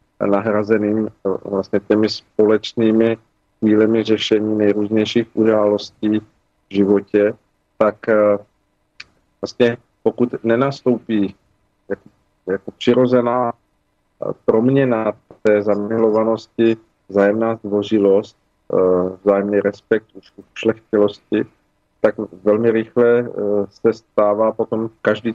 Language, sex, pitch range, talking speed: Slovak, male, 100-115 Hz, 80 wpm